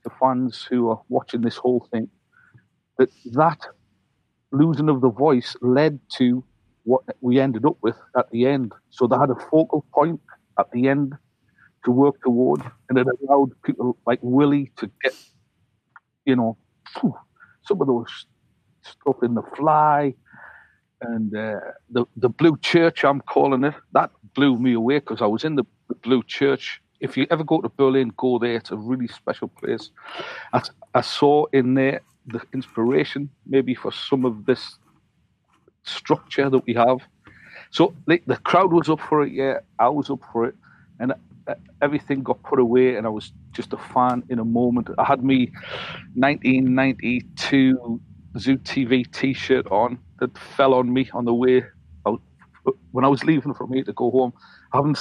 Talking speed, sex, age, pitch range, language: 170 wpm, male, 50-69, 120-140 Hz, English